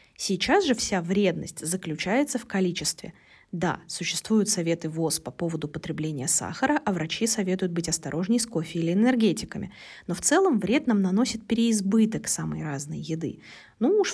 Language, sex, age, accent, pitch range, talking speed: Russian, female, 20-39, native, 170-240 Hz, 155 wpm